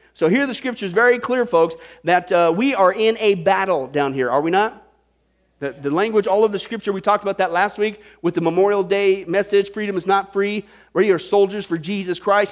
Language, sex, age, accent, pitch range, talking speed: English, male, 40-59, American, 195-275 Hz, 230 wpm